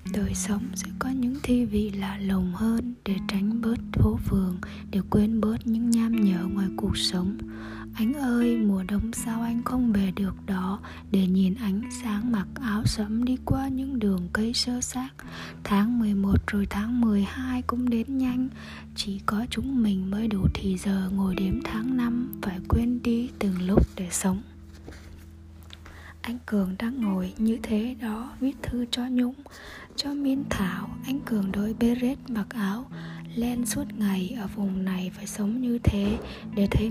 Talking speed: 175 wpm